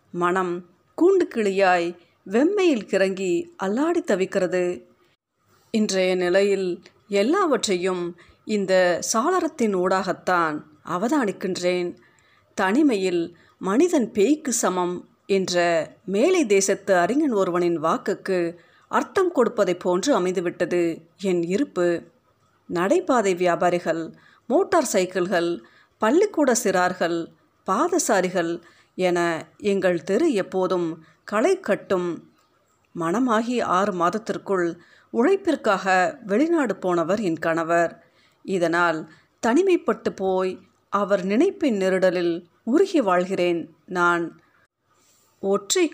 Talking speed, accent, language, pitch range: 80 wpm, native, Tamil, 175-220 Hz